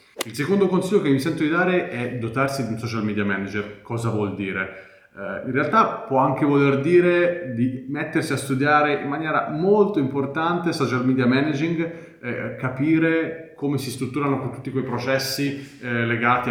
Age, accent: 30-49, native